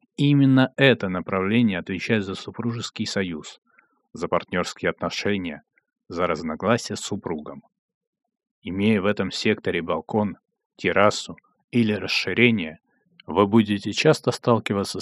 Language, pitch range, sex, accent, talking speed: Russian, 100-130 Hz, male, native, 105 wpm